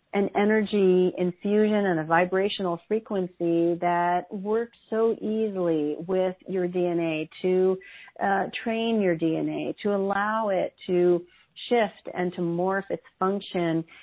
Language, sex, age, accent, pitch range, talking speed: English, female, 40-59, American, 165-195 Hz, 125 wpm